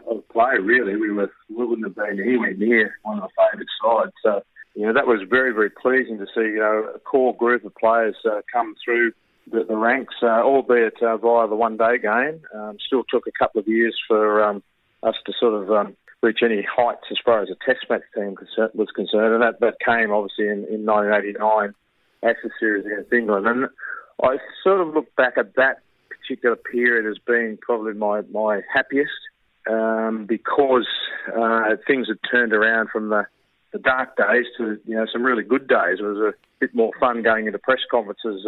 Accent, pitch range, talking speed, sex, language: Australian, 105-120 Hz, 200 wpm, male, English